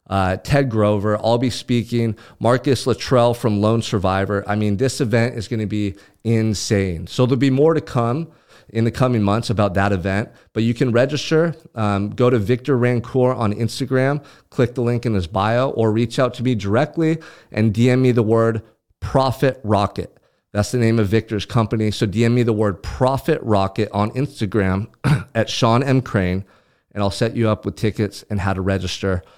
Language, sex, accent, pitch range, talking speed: English, male, American, 105-140 Hz, 190 wpm